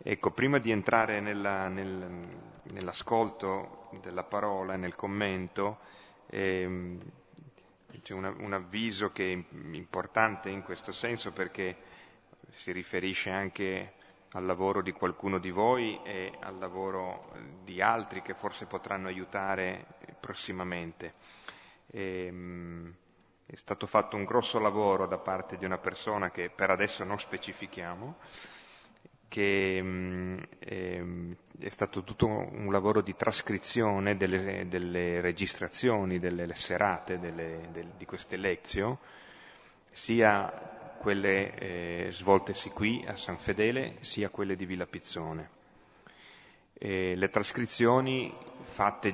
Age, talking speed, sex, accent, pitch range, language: 30-49, 115 wpm, male, native, 90-105 Hz, Italian